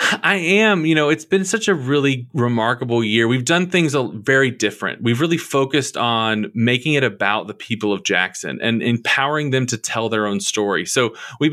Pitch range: 115-140 Hz